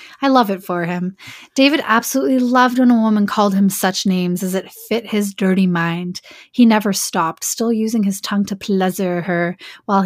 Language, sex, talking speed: English, female, 190 wpm